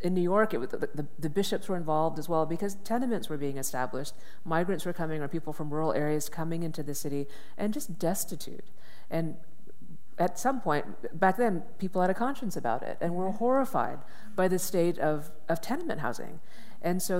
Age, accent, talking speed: 40-59, American, 200 wpm